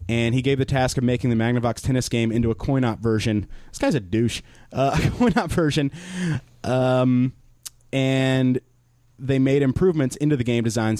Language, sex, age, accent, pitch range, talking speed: English, male, 30-49, American, 110-130 Hz, 170 wpm